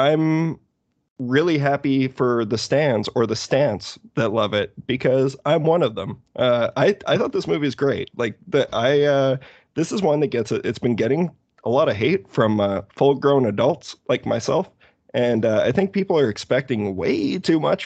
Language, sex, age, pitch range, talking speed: English, male, 20-39, 110-140 Hz, 200 wpm